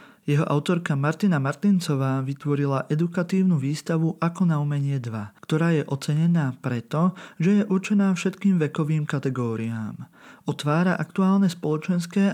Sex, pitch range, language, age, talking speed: male, 135-175 Hz, Slovak, 40-59, 115 wpm